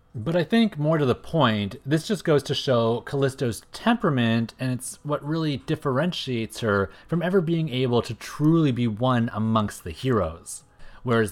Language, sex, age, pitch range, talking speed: English, male, 30-49, 105-130 Hz, 170 wpm